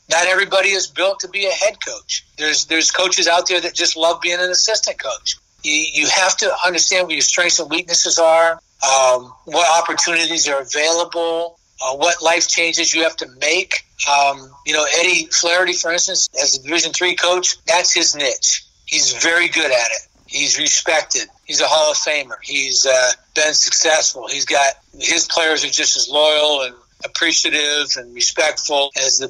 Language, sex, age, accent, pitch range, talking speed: English, male, 60-79, American, 140-175 Hz, 185 wpm